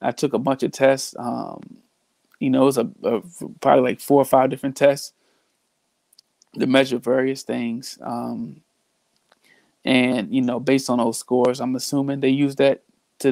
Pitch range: 125-140 Hz